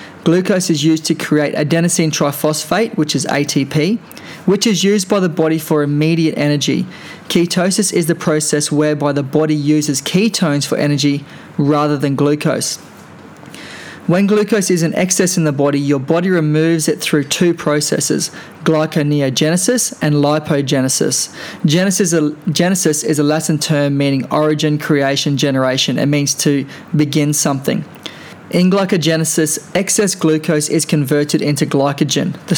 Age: 20-39